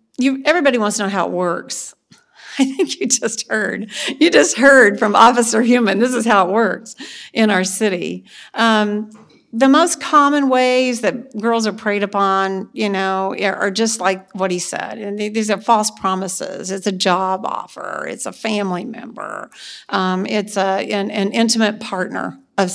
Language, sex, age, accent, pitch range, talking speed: English, female, 50-69, American, 185-225 Hz, 175 wpm